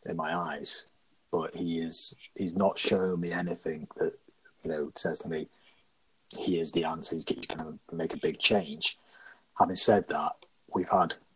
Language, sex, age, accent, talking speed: English, male, 30-49, British, 175 wpm